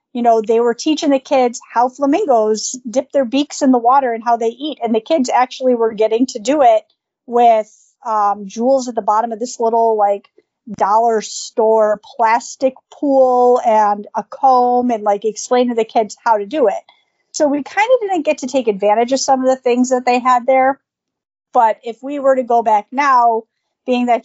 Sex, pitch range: female, 215-260 Hz